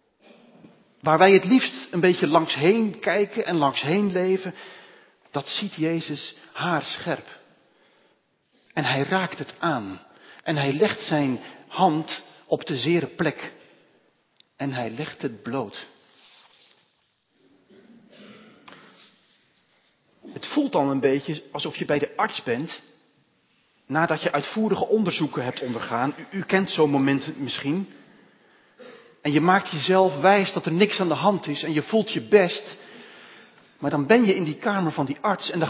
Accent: Dutch